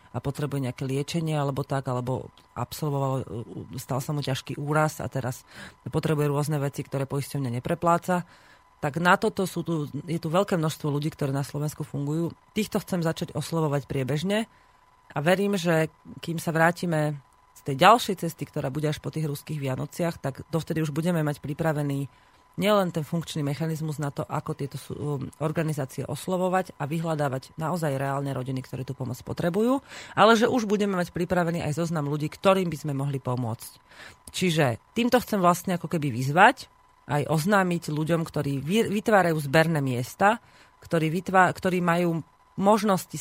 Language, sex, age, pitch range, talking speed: Slovak, female, 30-49, 140-175 Hz, 160 wpm